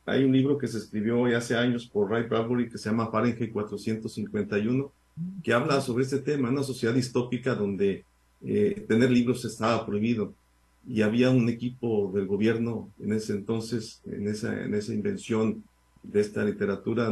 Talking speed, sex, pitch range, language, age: 165 wpm, male, 105-130 Hz, Spanish, 50-69